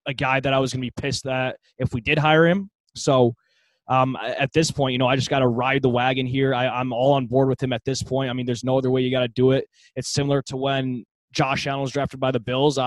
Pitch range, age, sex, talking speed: 125-140 Hz, 20-39, male, 290 wpm